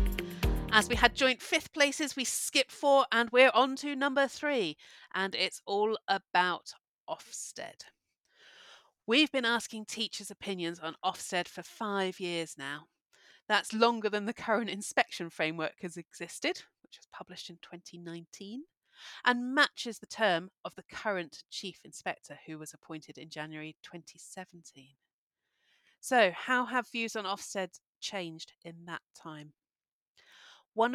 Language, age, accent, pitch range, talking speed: English, 40-59, British, 170-240 Hz, 140 wpm